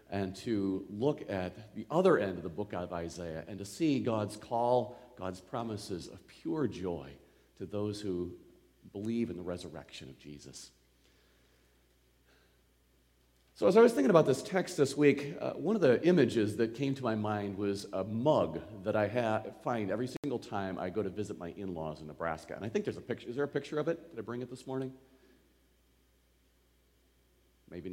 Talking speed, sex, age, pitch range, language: 185 wpm, male, 40-59, 85-135 Hz, English